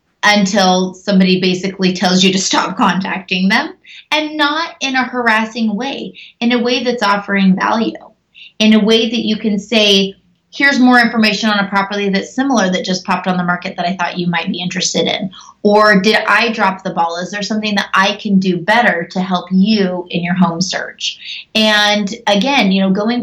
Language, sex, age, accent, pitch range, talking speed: English, female, 20-39, American, 195-245 Hz, 195 wpm